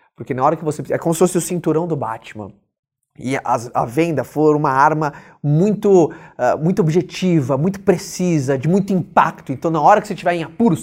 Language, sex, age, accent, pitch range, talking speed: Portuguese, male, 20-39, Brazilian, 135-170 Hz, 200 wpm